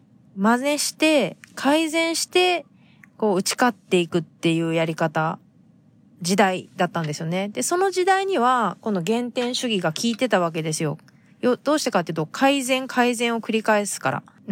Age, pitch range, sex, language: 20-39, 175-255 Hz, female, Japanese